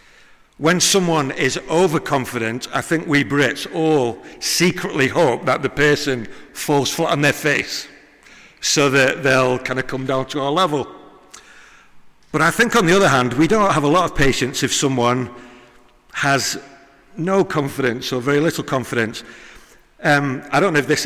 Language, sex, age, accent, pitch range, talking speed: English, male, 50-69, British, 135-175 Hz, 165 wpm